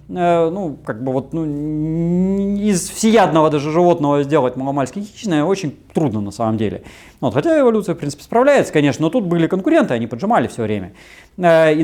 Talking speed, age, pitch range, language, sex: 165 wpm, 30-49, 125-180 Hz, Russian, male